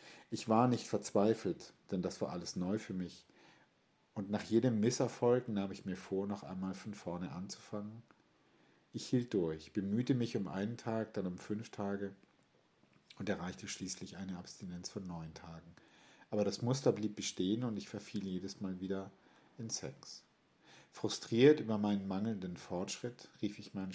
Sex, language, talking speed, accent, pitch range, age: male, English, 165 wpm, German, 95-115 Hz, 50-69